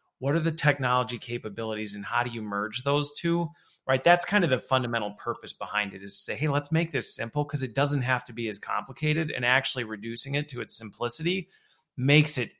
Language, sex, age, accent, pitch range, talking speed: English, male, 30-49, American, 125-160 Hz, 220 wpm